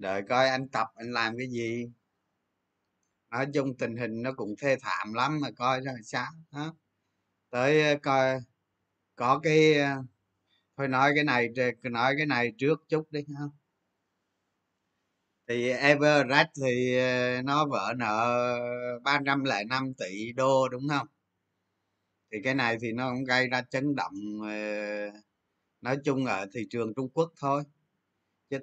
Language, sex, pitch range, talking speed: Vietnamese, male, 105-145 Hz, 140 wpm